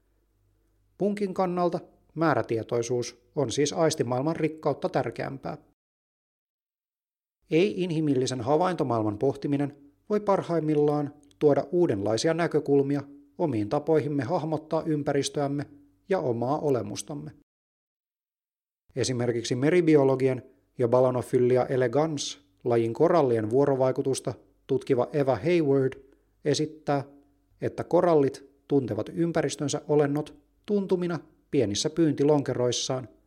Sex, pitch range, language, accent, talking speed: male, 120-155 Hz, Finnish, native, 80 wpm